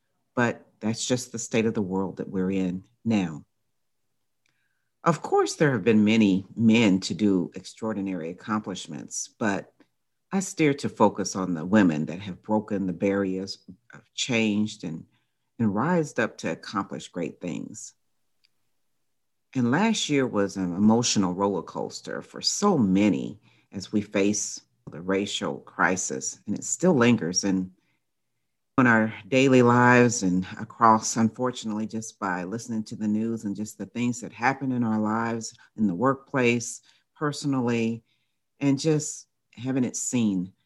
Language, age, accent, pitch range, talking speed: English, 50-69, American, 100-125 Hz, 145 wpm